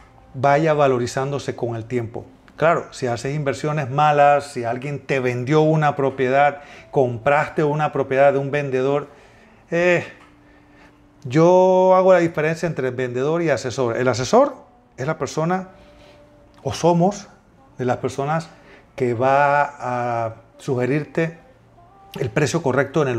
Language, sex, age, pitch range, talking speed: Spanish, male, 40-59, 125-160 Hz, 130 wpm